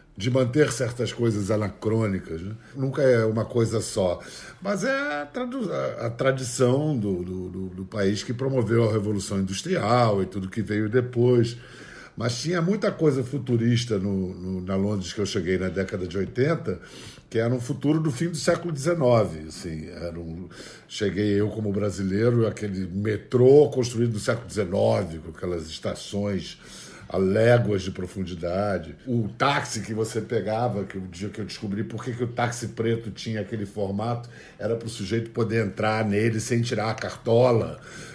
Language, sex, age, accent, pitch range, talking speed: Portuguese, male, 50-69, Brazilian, 100-125 Hz, 165 wpm